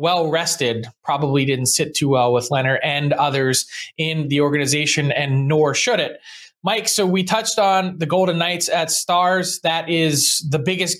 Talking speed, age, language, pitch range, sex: 170 wpm, 20-39, English, 155-180 Hz, male